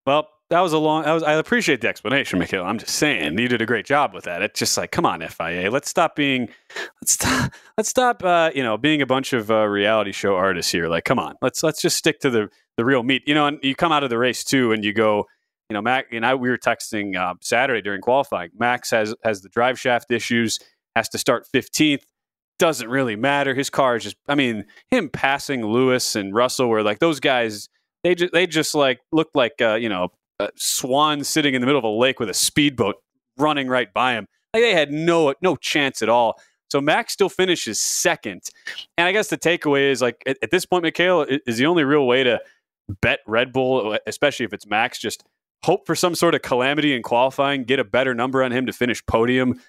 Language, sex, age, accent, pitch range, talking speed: English, male, 30-49, American, 115-155 Hz, 235 wpm